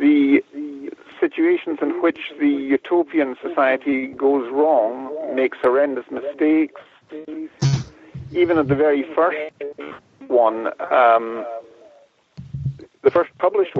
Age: 50-69